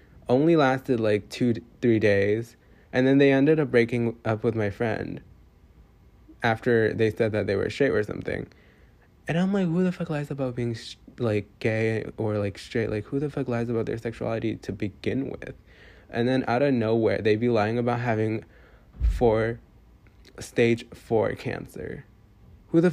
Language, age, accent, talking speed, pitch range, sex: English, 20-39, American, 175 wpm, 105-120 Hz, male